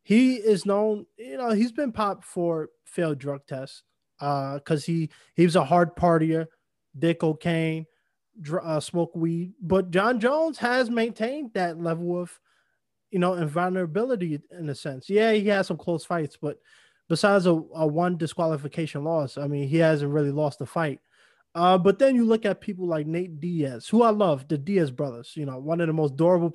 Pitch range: 160-200 Hz